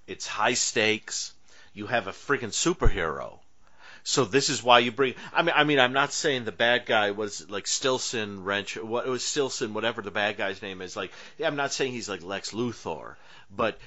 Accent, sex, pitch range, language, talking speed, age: American, male, 105-140 Hz, English, 215 wpm, 40-59